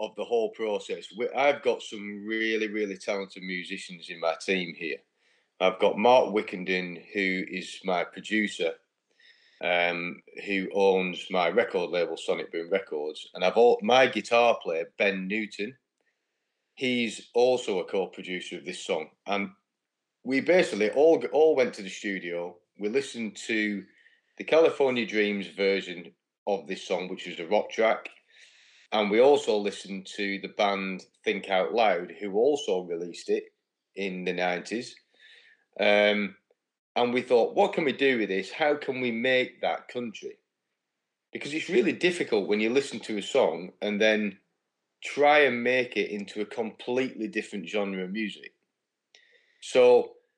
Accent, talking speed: British, 150 wpm